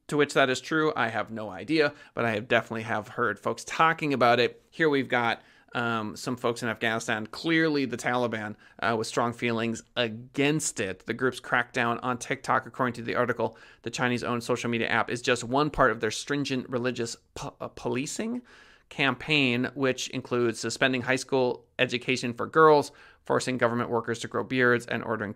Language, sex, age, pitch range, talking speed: English, male, 30-49, 115-140 Hz, 180 wpm